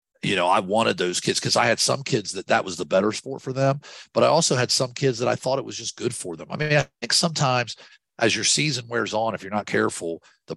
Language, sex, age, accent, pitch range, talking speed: English, male, 50-69, American, 95-145 Hz, 280 wpm